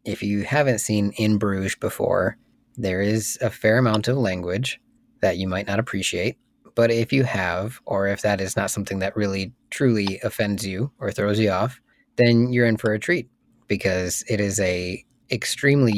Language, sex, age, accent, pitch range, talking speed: English, male, 20-39, American, 95-115 Hz, 185 wpm